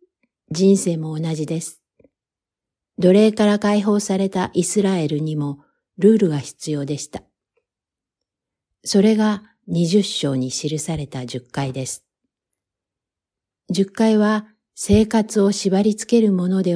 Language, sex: Japanese, female